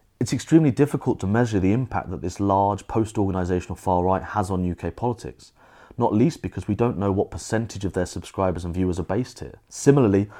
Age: 30-49